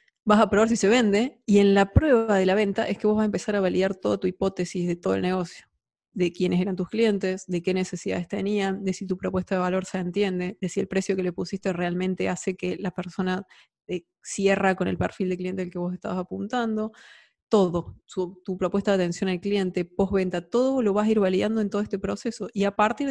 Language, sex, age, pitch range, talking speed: Spanish, female, 20-39, 185-220 Hz, 230 wpm